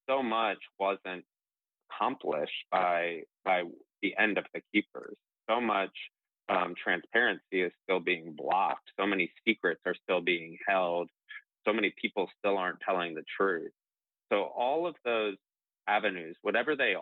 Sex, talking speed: male, 145 wpm